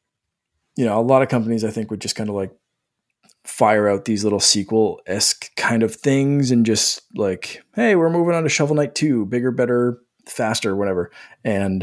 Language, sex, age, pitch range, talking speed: English, male, 20-39, 110-130 Hz, 195 wpm